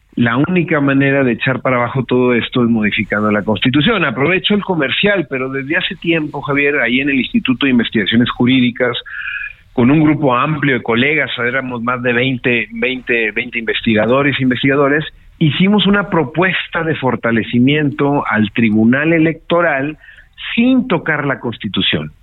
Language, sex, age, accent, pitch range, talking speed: Spanish, male, 50-69, Mexican, 120-160 Hz, 150 wpm